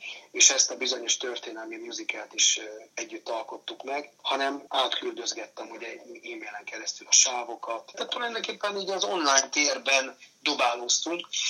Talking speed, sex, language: 125 wpm, male, Hungarian